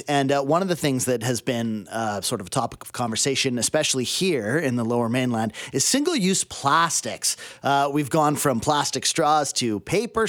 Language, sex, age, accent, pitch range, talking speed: English, male, 30-49, American, 130-165 Hz, 190 wpm